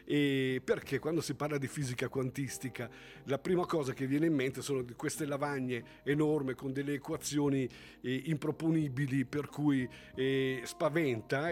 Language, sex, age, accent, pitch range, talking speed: Italian, male, 50-69, native, 125-155 Hz, 145 wpm